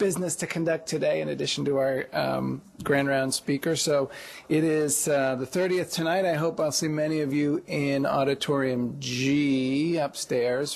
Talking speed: 165 wpm